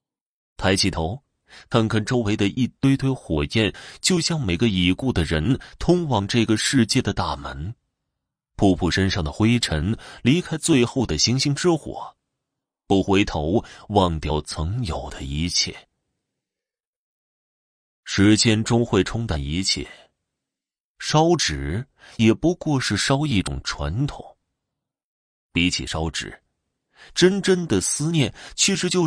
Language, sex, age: Chinese, male, 30-49